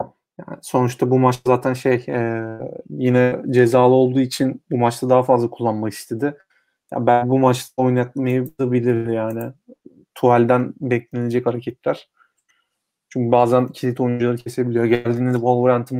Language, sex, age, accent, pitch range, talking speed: Turkish, male, 30-49, native, 120-135 Hz, 130 wpm